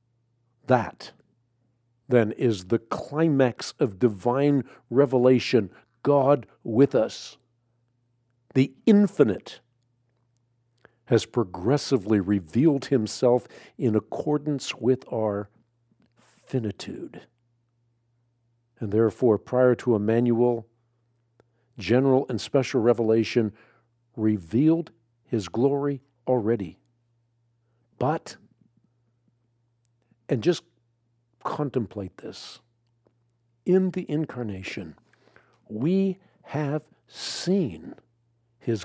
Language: English